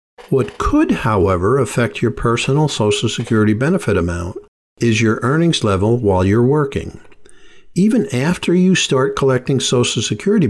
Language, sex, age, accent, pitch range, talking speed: English, male, 50-69, American, 100-135 Hz, 135 wpm